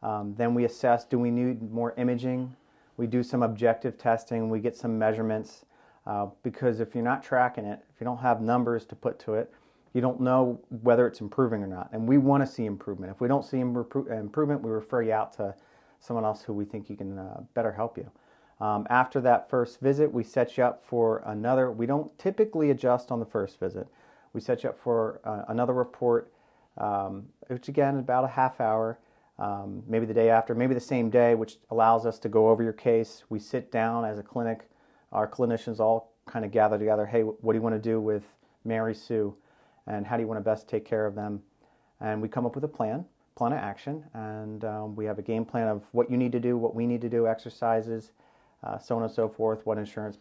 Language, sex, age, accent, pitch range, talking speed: English, male, 40-59, American, 110-125 Hz, 230 wpm